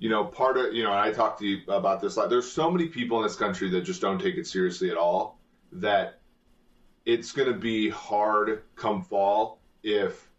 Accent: American